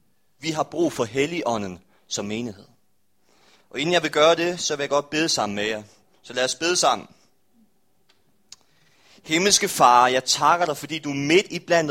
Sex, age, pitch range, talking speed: male, 30-49, 145-200 Hz, 185 wpm